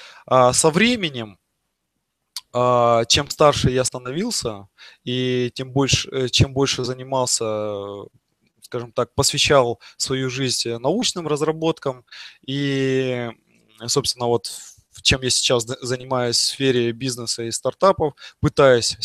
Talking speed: 100 wpm